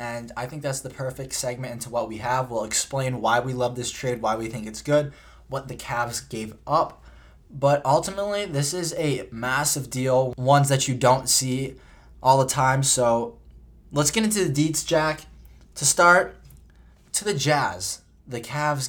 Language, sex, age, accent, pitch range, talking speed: English, male, 20-39, American, 115-145 Hz, 180 wpm